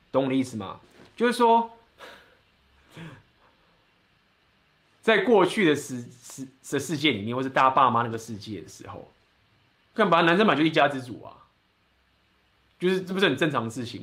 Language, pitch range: Chinese, 120-170 Hz